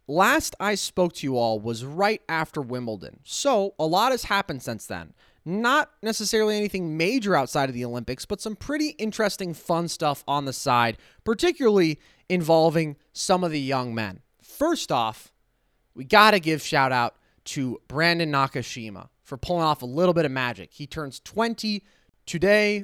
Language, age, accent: English, 20-39, American